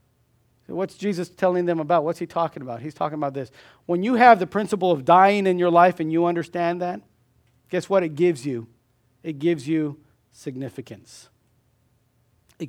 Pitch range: 125-195 Hz